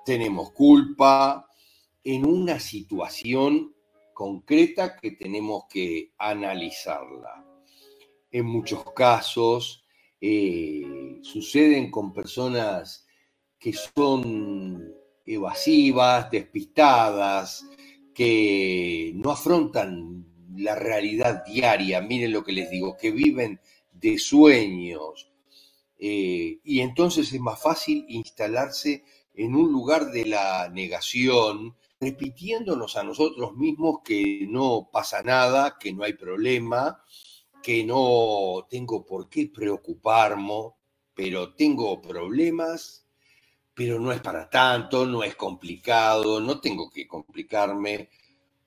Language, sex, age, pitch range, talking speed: Spanish, male, 50-69, 105-175 Hz, 100 wpm